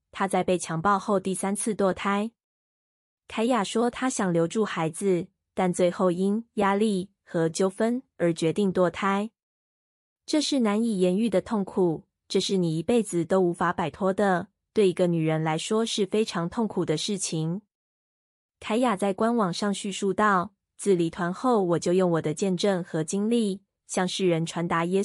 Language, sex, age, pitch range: Chinese, female, 20-39, 175-215 Hz